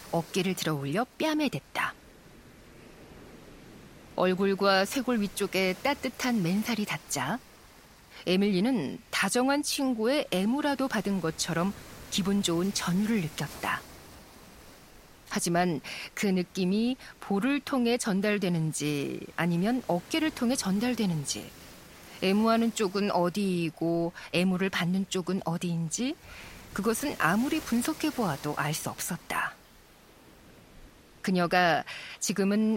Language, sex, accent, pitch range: Korean, female, native, 185-245 Hz